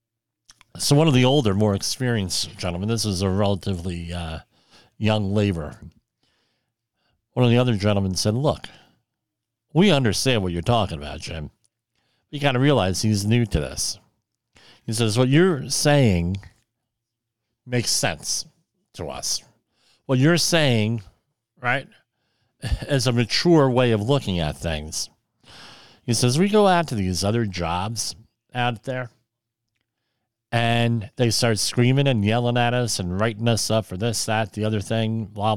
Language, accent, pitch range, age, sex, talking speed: English, American, 105-125 Hz, 50-69, male, 150 wpm